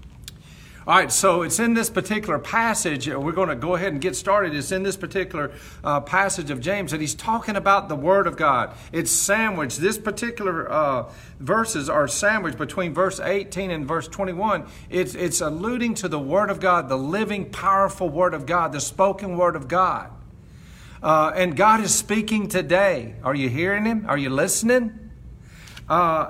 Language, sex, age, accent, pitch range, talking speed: English, male, 50-69, American, 160-200 Hz, 180 wpm